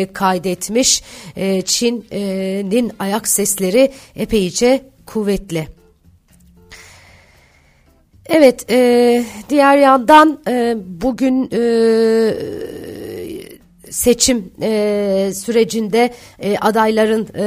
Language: Turkish